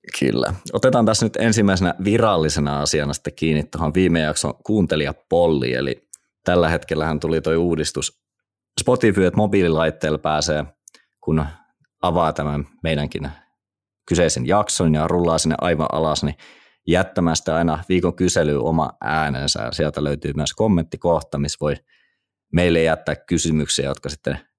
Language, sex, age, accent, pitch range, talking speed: Finnish, male, 30-49, native, 75-90 Hz, 125 wpm